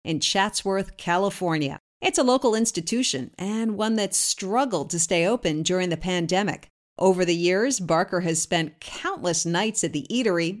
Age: 50-69